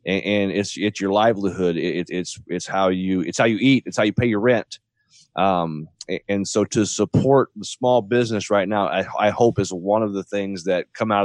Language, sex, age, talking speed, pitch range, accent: English, male, 30-49, 220 wpm, 90-110 Hz, American